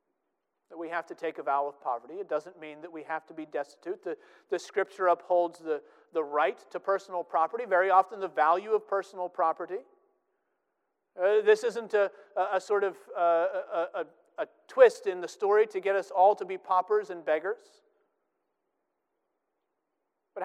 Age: 40-59